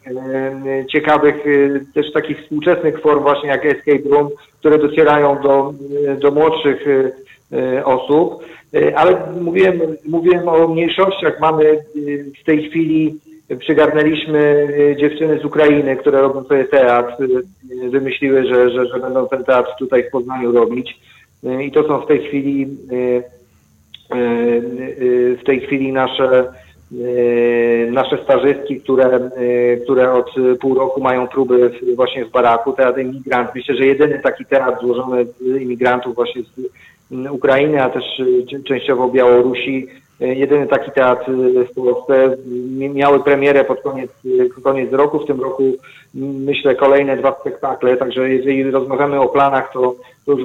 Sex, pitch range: male, 125-145 Hz